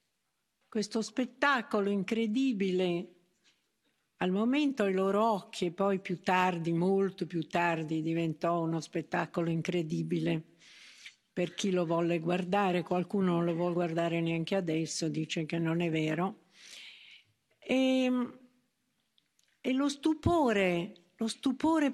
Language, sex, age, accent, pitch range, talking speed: Italian, female, 60-79, native, 180-235 Hz, 110 wpm